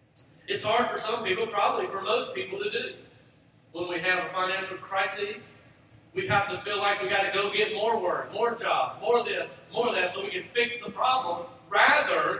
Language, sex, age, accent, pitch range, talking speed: English, male, 40-59, American, 185-265 Hz, 215 wpm